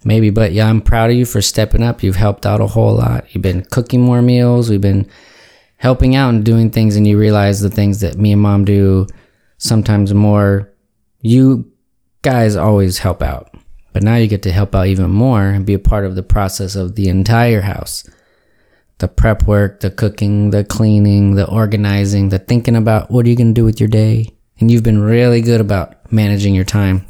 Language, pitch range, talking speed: English, 100-115 Hz, 210 wpm